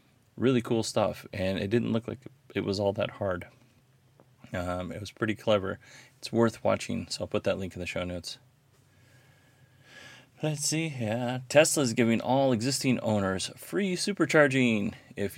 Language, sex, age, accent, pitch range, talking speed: English, male, 30-49, American, 95-130 Hz, 165 wpm